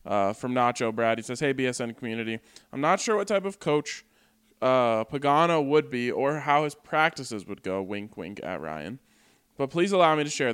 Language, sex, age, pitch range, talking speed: English, male, 20-39, 110-140 Hz, 205 wpm